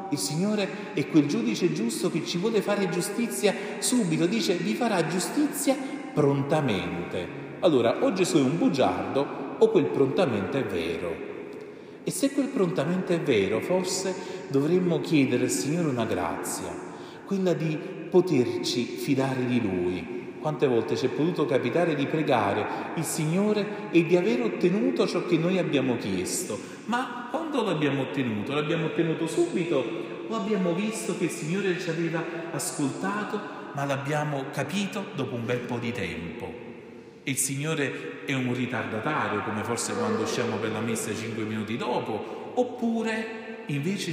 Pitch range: 140-205 Hz